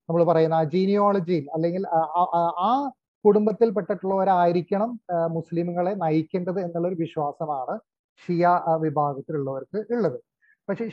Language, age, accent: Malayalam, 30-49, native